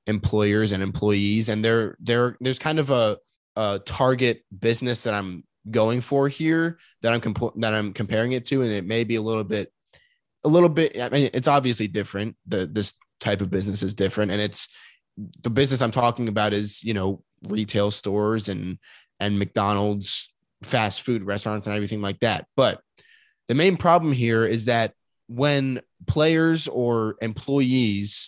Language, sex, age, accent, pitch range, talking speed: English, male, 20-39, American, 100-120 Hz, 170 wpm